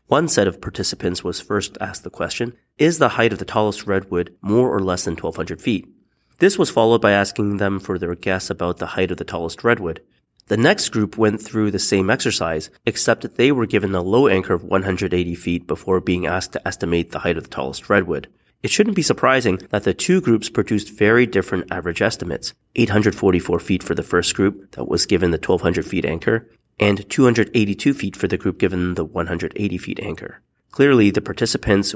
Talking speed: 205 wpm